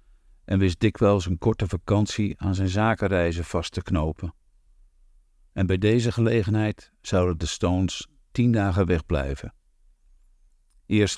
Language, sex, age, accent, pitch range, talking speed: French, male, 50-69, Dutch, 75-100 Hz, 125 wpm